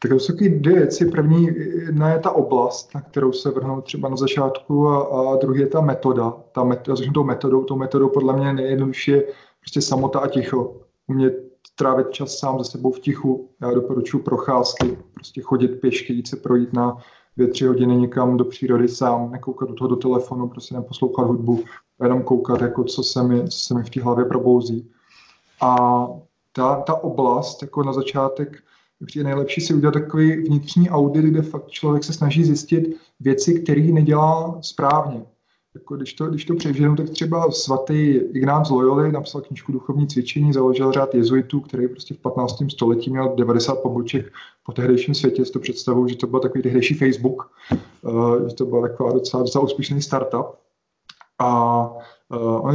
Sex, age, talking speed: male, 20-39, 175 wpm